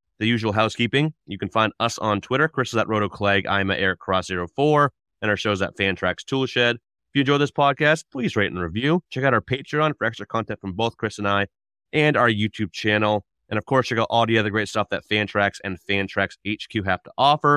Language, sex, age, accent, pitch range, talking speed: English, male, 30-49, American, 100-125 Hz, 225 wpm